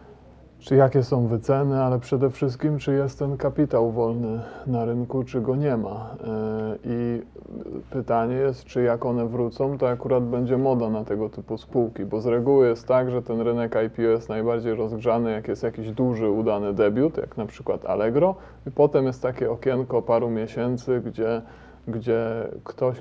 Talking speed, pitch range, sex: 170 wpm, 115-135 Hz, male